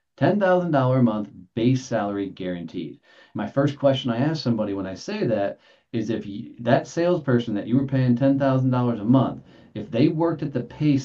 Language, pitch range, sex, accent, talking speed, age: English, 110-135 Hz, male, American, 175 wpm, 40-59